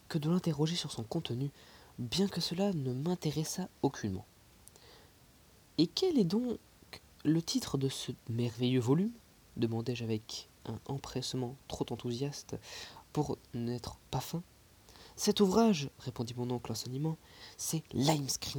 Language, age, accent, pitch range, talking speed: French, 20-39, French, 115-160 Hz, 140 wpm